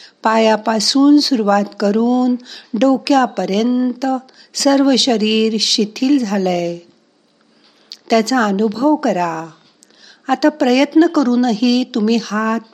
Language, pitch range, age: Marathi, 190-255 Hz, 50-69